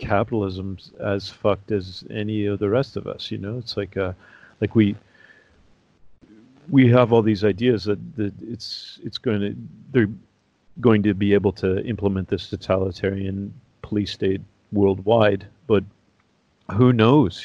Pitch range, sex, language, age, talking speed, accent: 100-110 Hz, male, English, 40-59, 150 wpm, American